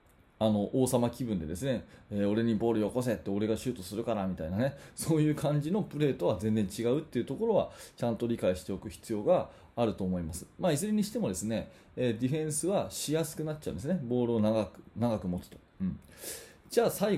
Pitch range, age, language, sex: 105-150 Hz, 20-39, Japanese, male